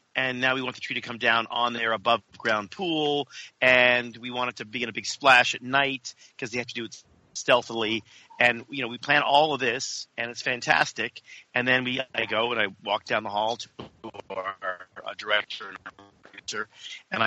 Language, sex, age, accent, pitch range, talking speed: English, male, 40-59, American, 115-140 Hz, 210 wpm